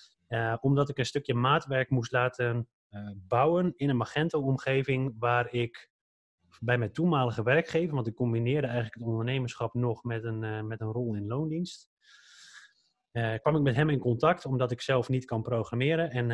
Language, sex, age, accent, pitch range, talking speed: Dutch, male, 30-49, Dutch, 115-140 Hz, 175 wpm